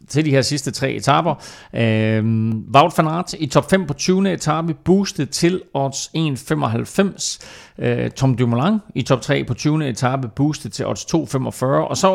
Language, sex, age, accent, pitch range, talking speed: Danish, male, 40-59, native, 115-165 Hz, 175 wpm